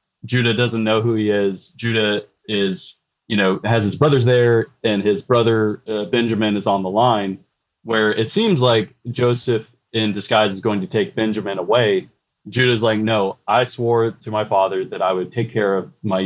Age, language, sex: 30-49, English, male